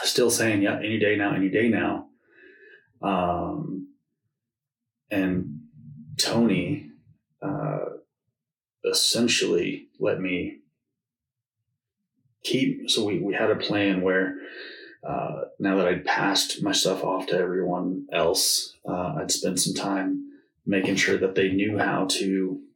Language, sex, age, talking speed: English, male, 30-49, 125 wpm